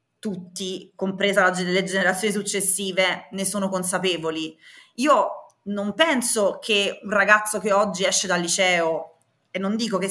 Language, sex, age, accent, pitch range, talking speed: Italian, female, 20-39, native, 185-220 Hz, 135 wpm